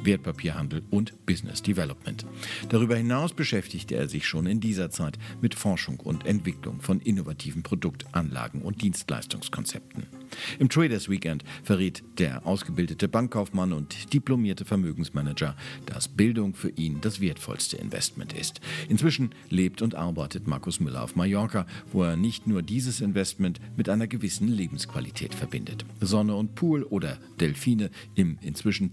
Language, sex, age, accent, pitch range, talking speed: German, male, 50-69, German, 90-115 Hz, 135 wpm